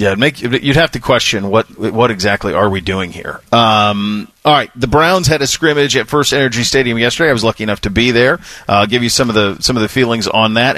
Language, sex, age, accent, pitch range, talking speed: English, male, 40-59, American, 115-145 Hz, 265 wpm